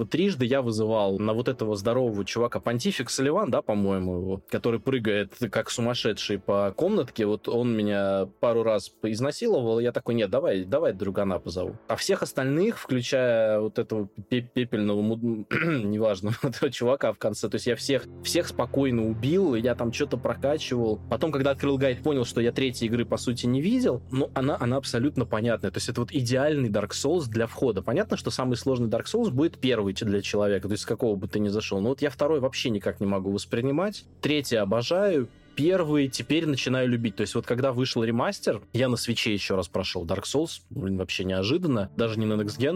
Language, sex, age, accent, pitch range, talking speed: Russian, male, 20-39, native, 105-130 Hz, 190 wpm